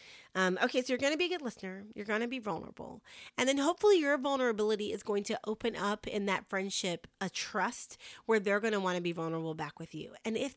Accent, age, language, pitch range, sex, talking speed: American, 30-49, English, 190-265 Hz, female, 245 wpm